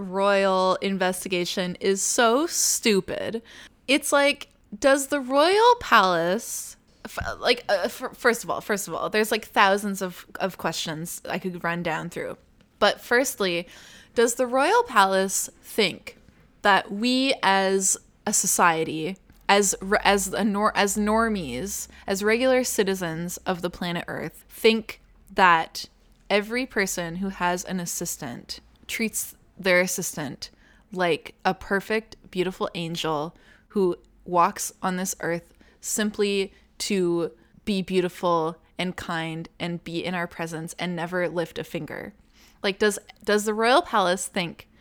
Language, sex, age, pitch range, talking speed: English, female, 20-39, 175-220 Hz, 135 wpm